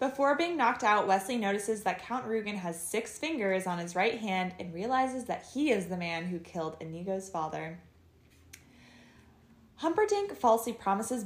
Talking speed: 160 wpm